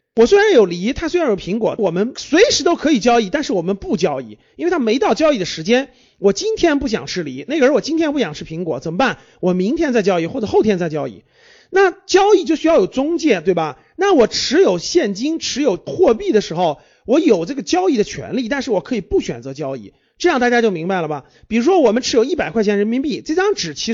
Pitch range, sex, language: 195-325 Hz, male, Chinese